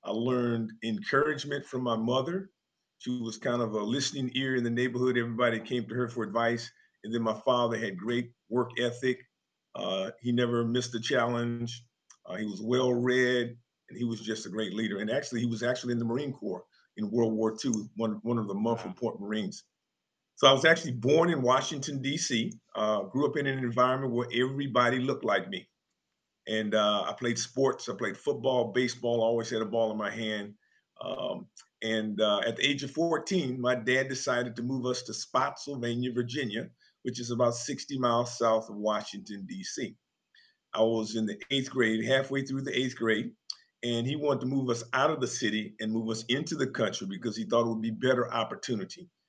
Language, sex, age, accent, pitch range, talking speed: English, male, 50-69, American, 110-130 Hz, 200 wpm